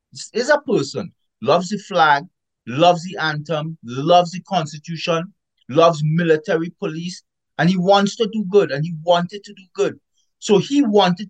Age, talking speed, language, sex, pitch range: 30-49, 160 wpm, English, male, 145-190 Hz